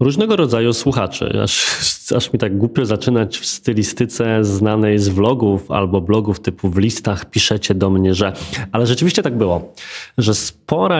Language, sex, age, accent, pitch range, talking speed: Polish, male, 20-39, native, 105-130 Hz, 160 wpm